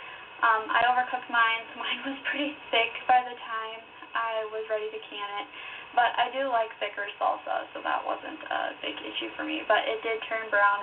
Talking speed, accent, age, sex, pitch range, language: 205 wpm, American, 10-29, female, 235-345 Hz, English